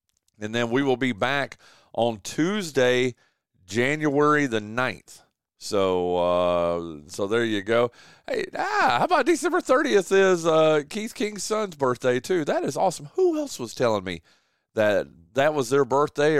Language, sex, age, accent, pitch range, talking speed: English, male, 40-59, American, 110-175 Hz, 155 wpm